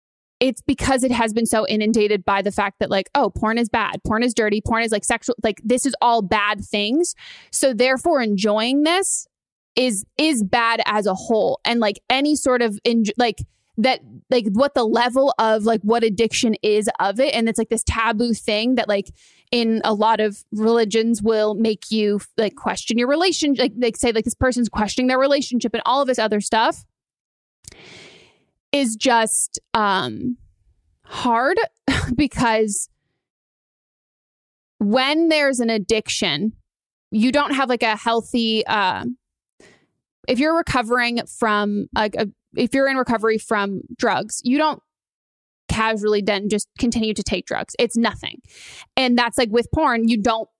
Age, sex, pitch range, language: 20-39, female, 220-255 Hz, English